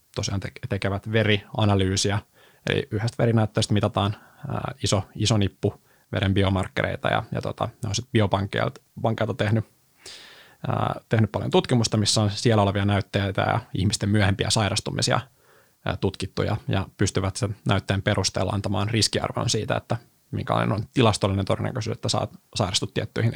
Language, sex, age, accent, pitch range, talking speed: Finnish, male, 20-39, native, 100-120 Hz, 135 wpm